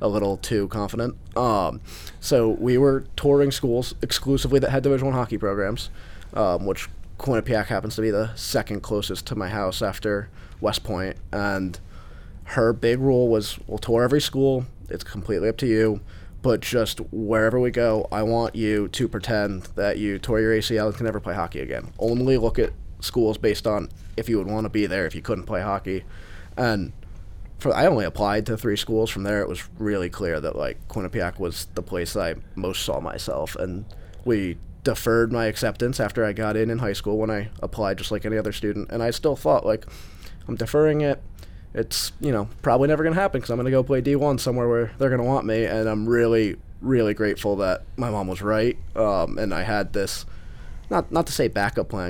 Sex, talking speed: male, 205 wpm